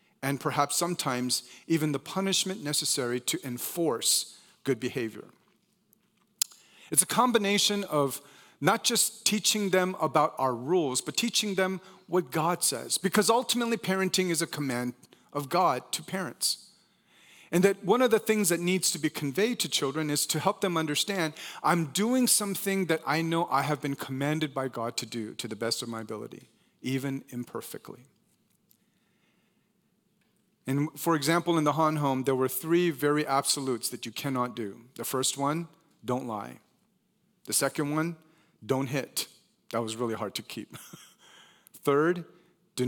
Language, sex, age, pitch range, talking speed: English, male, 40-59, 130-190 Hz, 155 wpm